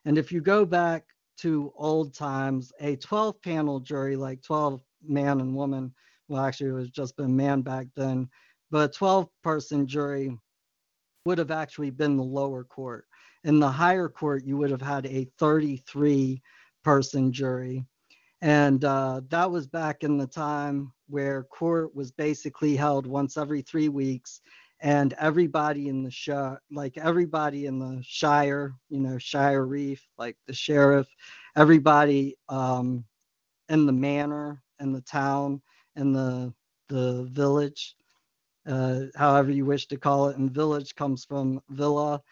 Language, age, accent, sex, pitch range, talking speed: English, 50-69, American, male, 135-150 Hz, 150 wpm